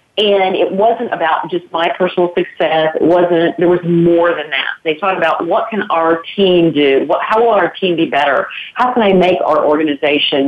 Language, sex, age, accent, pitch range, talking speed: English, female, 40-59, American, 165-220 Hz, 205 wpm